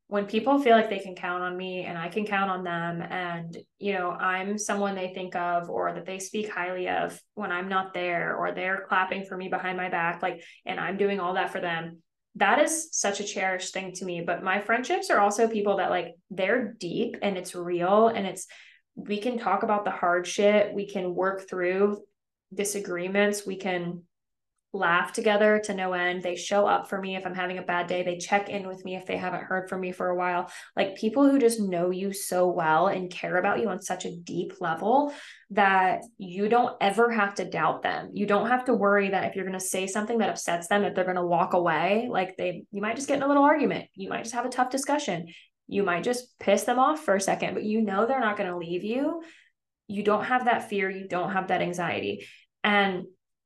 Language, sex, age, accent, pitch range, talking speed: English, female, 10-29, American, 180-210 Hz, 235 wpm